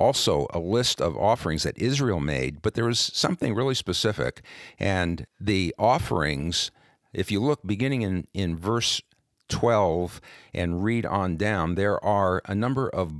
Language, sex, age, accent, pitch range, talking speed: English, male, 50-69, American, 85-115 Hz, 155 wpm